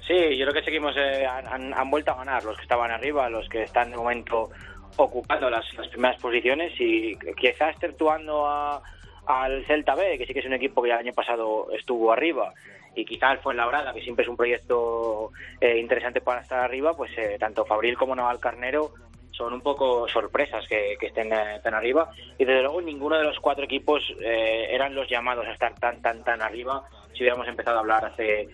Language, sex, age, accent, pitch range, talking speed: Spanish, male, 20-39, Spanish, 115-145 Hz, 215 wpm